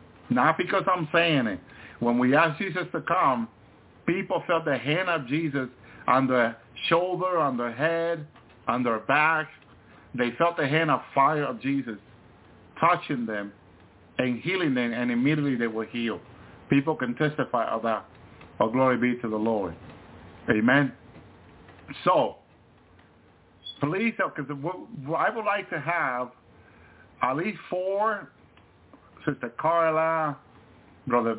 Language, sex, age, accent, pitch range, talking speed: English, male, 50-69, American, 115-150 Hz, 135 wpm